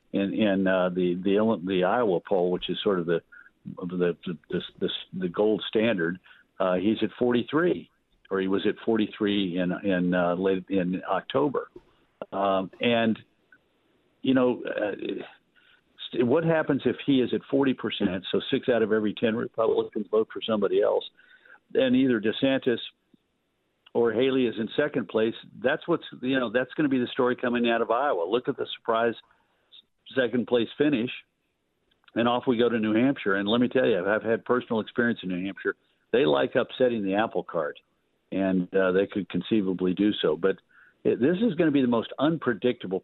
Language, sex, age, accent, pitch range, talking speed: English, male, 50-69, American, 100-130 Hz, 185 wpm